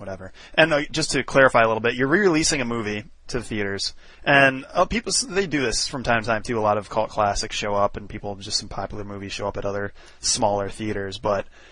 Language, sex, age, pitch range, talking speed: English, male, 20-39, 100-120 Hz, 235 wpm